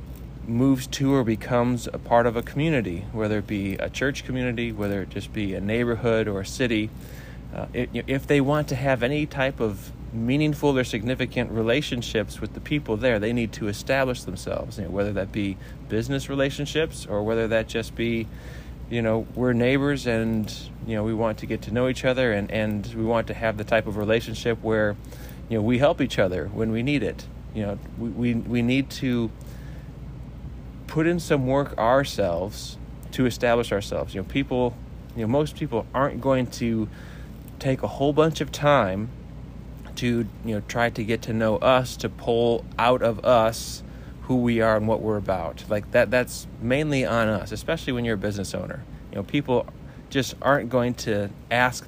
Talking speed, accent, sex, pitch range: 195 wpm, American, male, 110-130 Hz